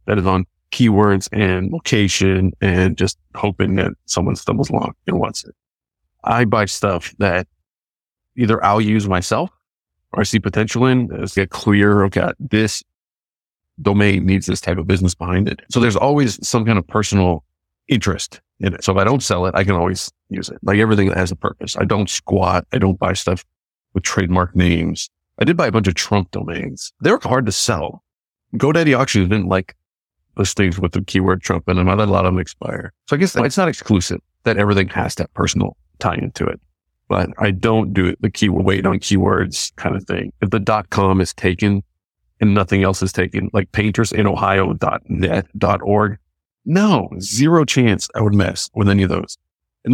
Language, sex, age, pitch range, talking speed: English, male, 30-49, 95-110 Hz, 190 wpm